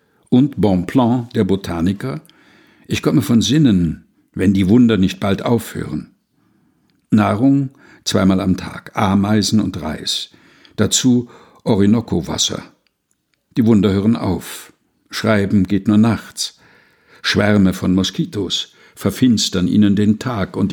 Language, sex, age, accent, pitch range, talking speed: German, male, 60-79, German, 95-120 Hz, 115 wpm